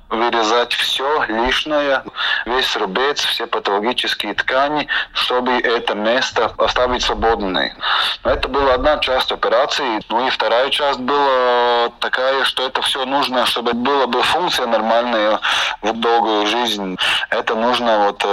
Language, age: Russian, 20-39